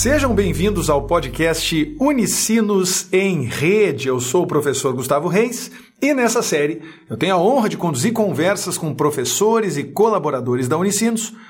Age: 50-69